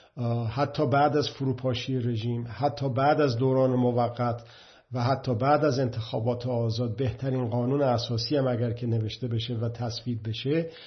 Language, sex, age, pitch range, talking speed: Persian, male, 50-69, 120-140 Hz, 145 wpm